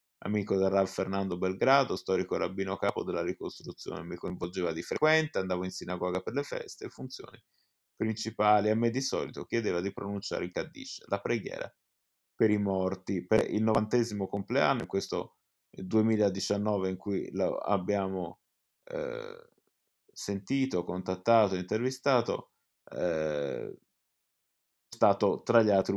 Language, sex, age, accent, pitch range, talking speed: Italian, male, 20-39, native, 95-115 Hz, 130 wpm